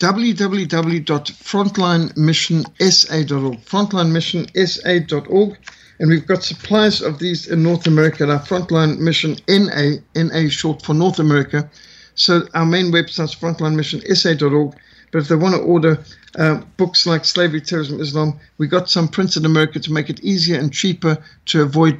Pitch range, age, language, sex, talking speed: 155-180 Hz, 60-79, English, male, 145 wpm